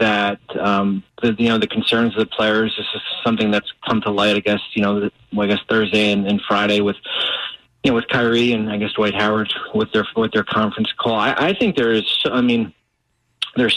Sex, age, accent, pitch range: male, 30-49, American, 105-115 Hz